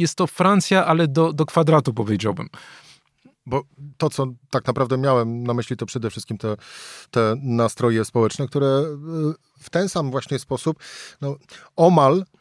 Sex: male